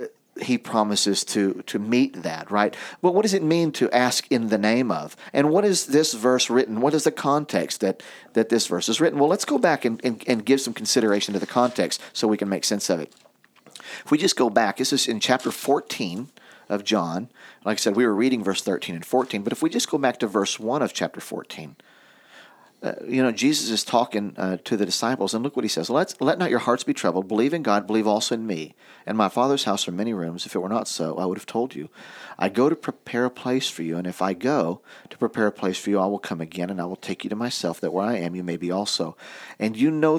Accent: American